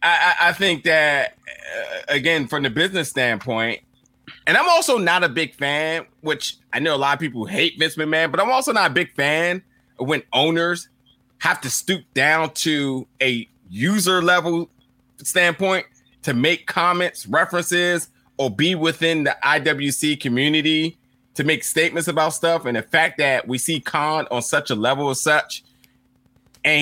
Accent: American